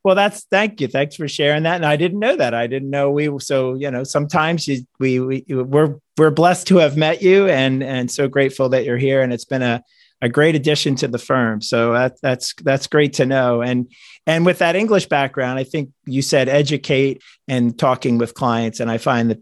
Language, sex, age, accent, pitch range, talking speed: English, male, 40-59, American, 120-150 Hz, 230 wpm